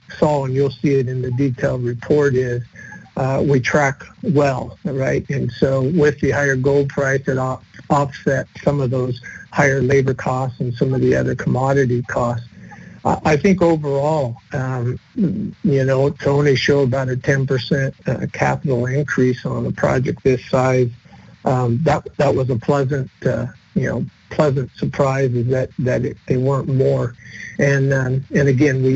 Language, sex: English, male